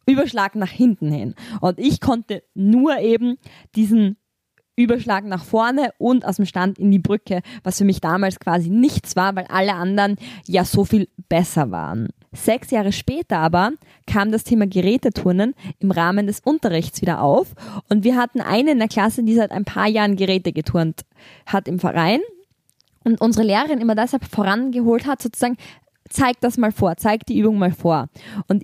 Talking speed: 175 wpm